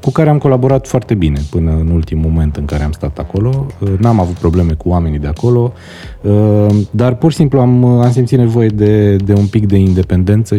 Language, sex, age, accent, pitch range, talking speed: Romanian, male, 30-49, native, 90-120 Hz, 205 wpm